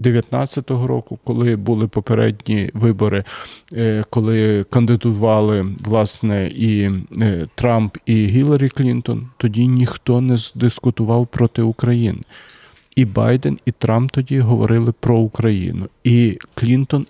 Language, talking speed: Ukrainian, 105 wpm